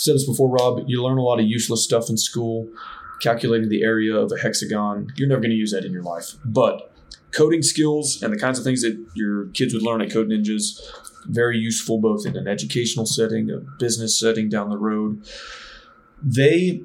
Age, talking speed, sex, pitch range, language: 20-39, 205 wpm, male, 110-125 Hz, English